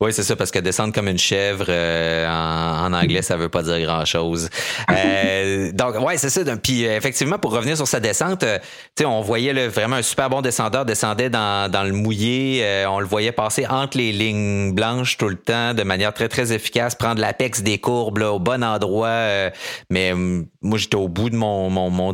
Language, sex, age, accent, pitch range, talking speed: French, male, 30-49, Canadian, 85-115 Hz, 225 wpm